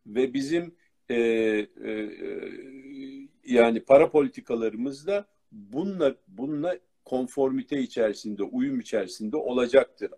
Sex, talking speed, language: male, 90 wpm, Turkish